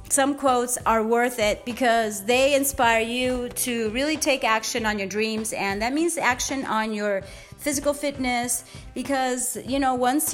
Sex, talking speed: female, 165 wpm